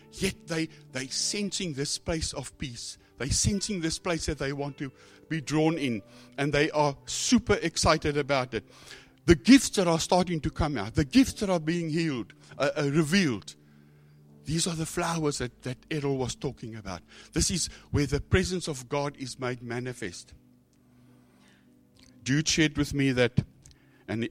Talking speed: 170 wpm